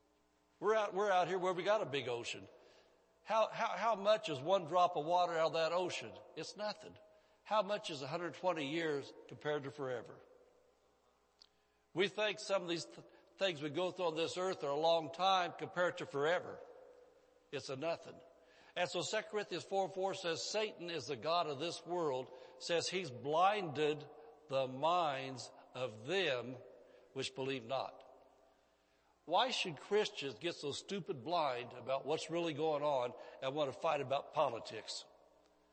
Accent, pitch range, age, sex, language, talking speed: American, 130-185 Hz, 60-79, male, English, 165 wpm